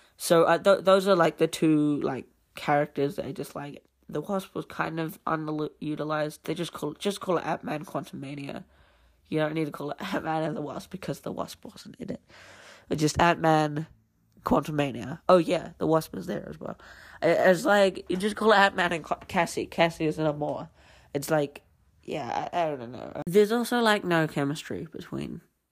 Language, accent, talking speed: English, British, 195 wpm